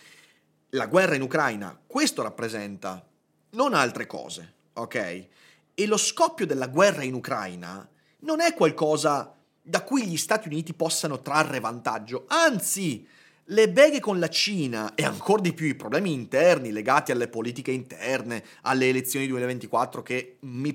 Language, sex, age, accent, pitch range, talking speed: Italian, male, 30-49, native, 125-175 Hz, 145 wpm